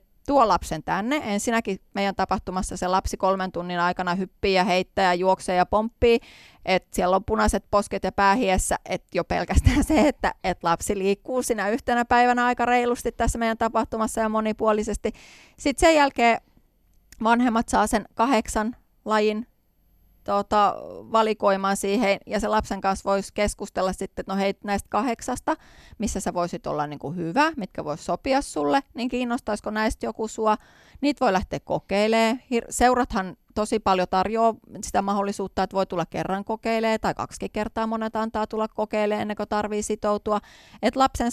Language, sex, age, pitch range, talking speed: Finnish, female, 30-49, 195-235 Hz, 160 wpm